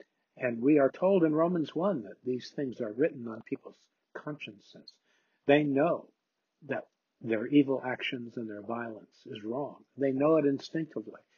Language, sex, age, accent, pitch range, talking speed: English, male, 50-69, American, 120-150 Hz, 160 wpm